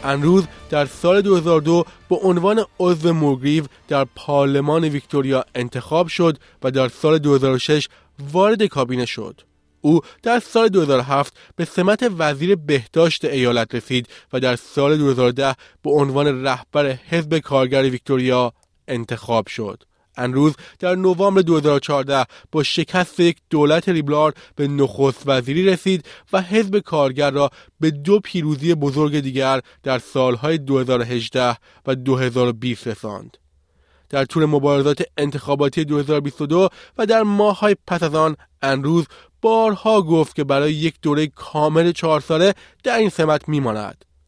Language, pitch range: Persian, 130-170 Hz